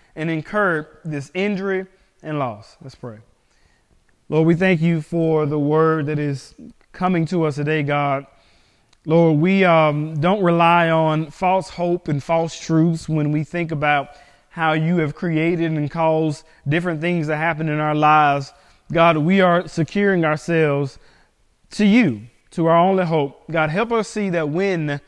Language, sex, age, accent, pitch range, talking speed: English, male, 20-39, American, 150-175 Hz, 160 wpm